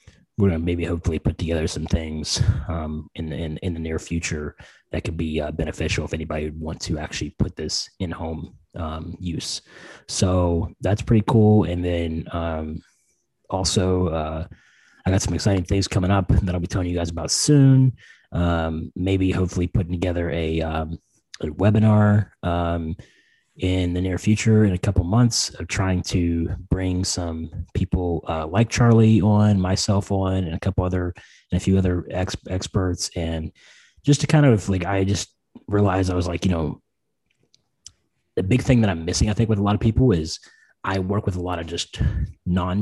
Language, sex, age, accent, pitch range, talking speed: English, male, 30-49, American, 85-100 Hz, 185 wpm